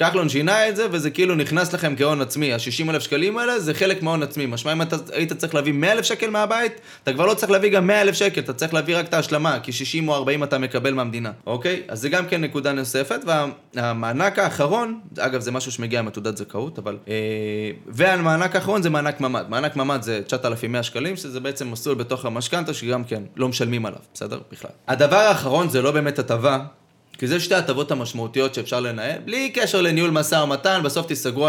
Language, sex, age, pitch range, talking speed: Hebrew, male, 20-39, 125-170 Hz, 190 wpm